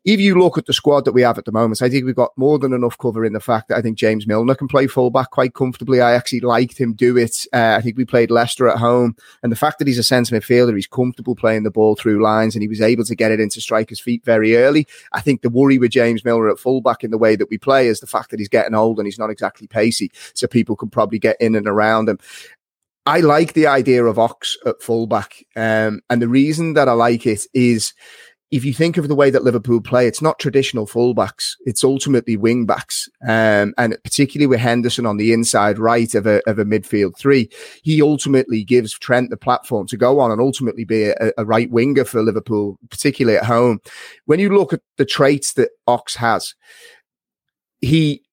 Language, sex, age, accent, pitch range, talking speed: English, male, 30-49, British, 110-135 Hz, 235 wpm